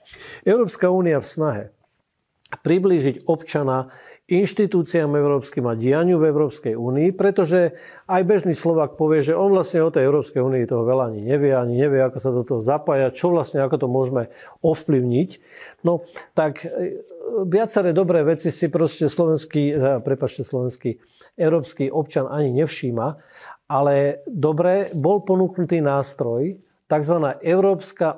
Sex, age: male, 50-69